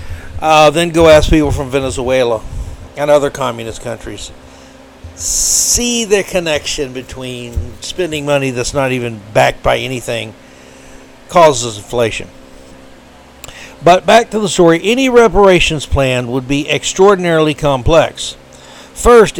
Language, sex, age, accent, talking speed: English, male, 60-79, American, 120 wpm